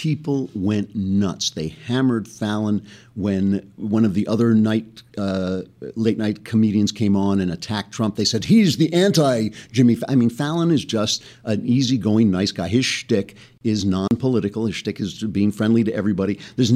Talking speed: 170 wpm